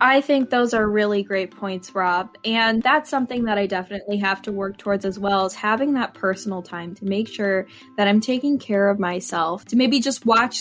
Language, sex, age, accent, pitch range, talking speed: English, female, 10-29, American, 205-255 Hz, 215 wpm